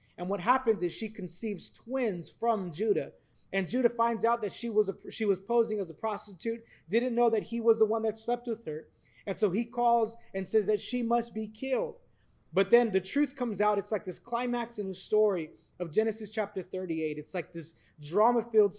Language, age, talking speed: English, 30-49, 210 wpm